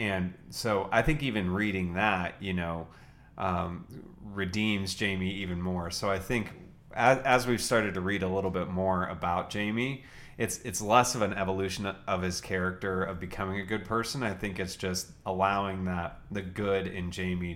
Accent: American